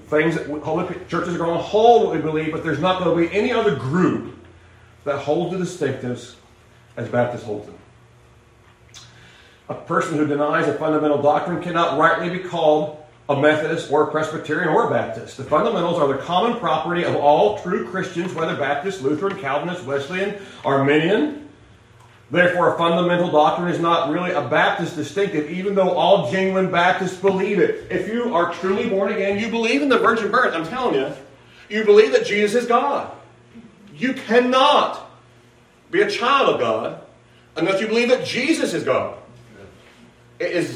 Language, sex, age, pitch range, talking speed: English, male, 40-59, 150-210 Hz, 170 wpm